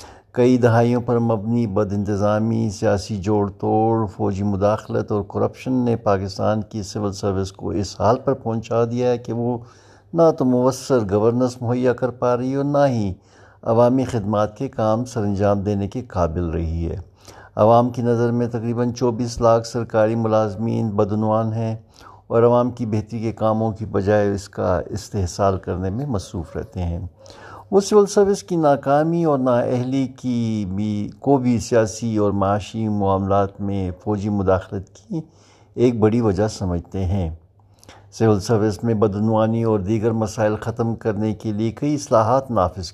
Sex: male